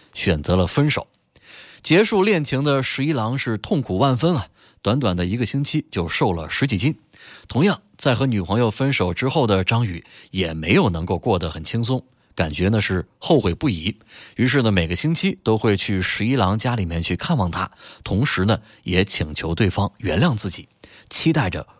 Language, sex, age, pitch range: Chinese, male, 20-39, 90-135 Hz